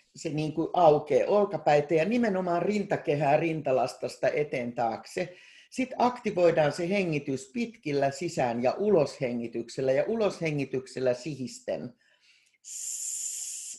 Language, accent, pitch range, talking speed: Finnish, native, 130-185 Hz, 100 wpm